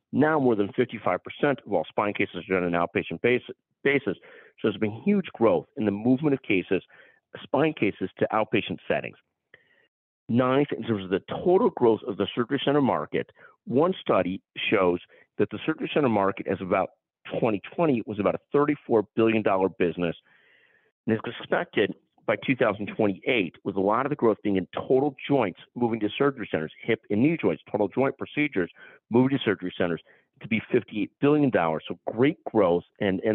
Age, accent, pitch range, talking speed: 50-69, American, 100-135 Hz, 175 wpm